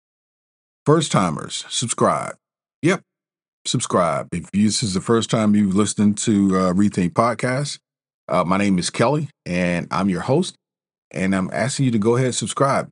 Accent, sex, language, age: American, male, English, 40-59